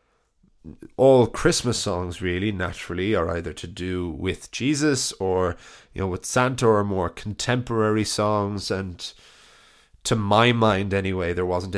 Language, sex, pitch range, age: English, male, 95-110 Hz, 20-39